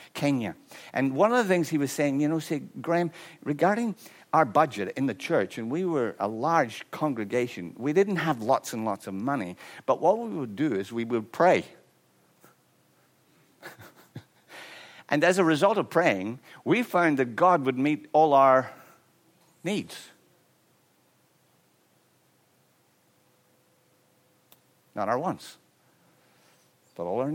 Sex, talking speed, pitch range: male, 140 wpm, 125-180 Hz